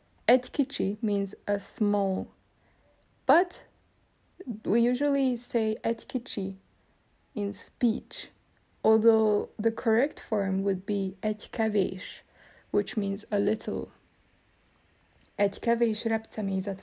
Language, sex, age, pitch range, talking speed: Hungarian, female, 20-39, 195-230 Hz, 90 wpm